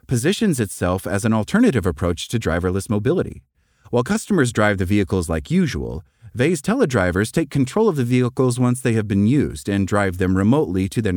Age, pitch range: 30-49, 95-125 Hz